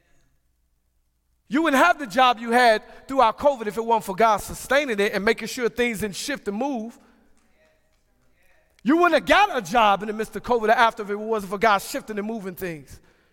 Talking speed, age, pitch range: 205 wpm, 40-59, 220-305 Hz